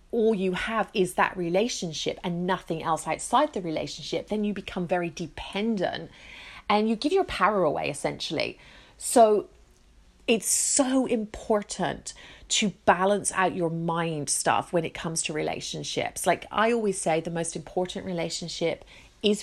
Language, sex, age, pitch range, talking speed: English, female, 30-49, 175-215 Hz, 150 wpm